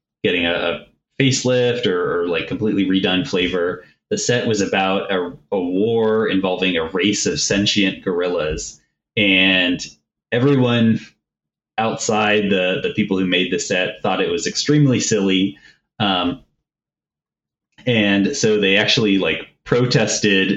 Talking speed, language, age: 130 wpm, English, 30-49